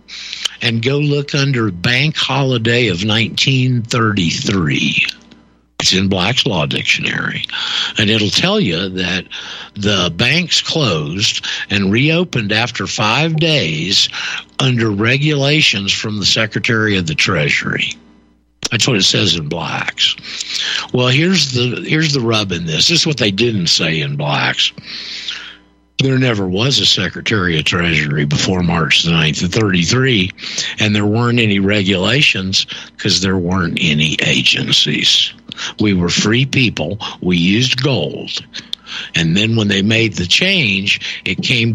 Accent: American